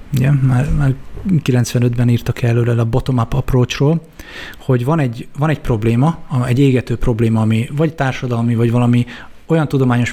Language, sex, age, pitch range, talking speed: Hungarian, male, 20-39, 120-140 Hz, 150 wpm